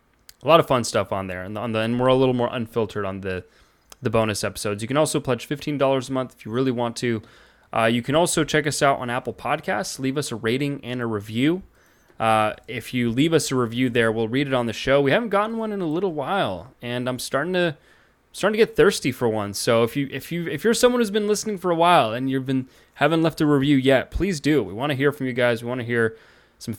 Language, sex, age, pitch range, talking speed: English, male, 20-39, 115-150 Hz, 265 wpm